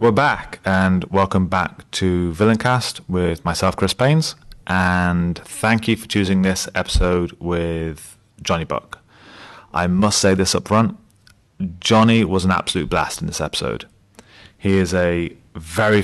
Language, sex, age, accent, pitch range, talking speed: English, male, 30-49, British, 85-105 Hz, 145 wpm